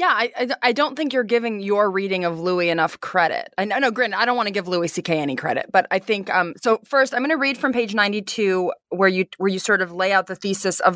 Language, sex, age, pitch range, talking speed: English, female, 20-39, 185-240 Hz, 260 wpm